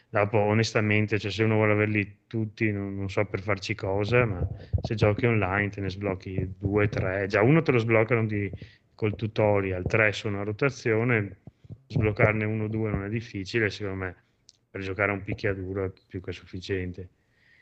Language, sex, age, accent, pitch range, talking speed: Italian, male, 20-39, native, 100-120 Hz, 175 wpm